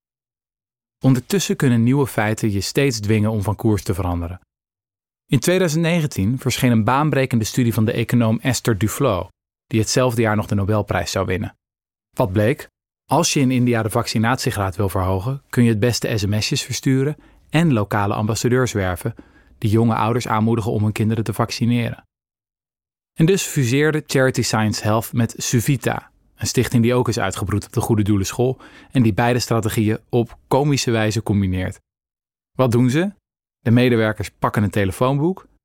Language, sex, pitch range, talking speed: Dutch, male, 105-130 Hz, 160 wpm